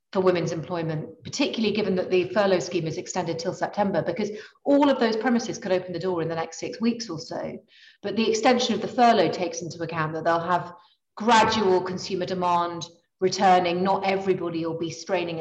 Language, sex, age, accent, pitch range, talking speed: English, female, 30-49, British, 170-200 Hz, 190 wpm